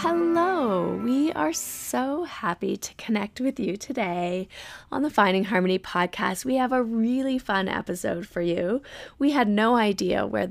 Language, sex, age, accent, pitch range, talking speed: English, female, 20-39, American, 180-245 Hz, 160 wpm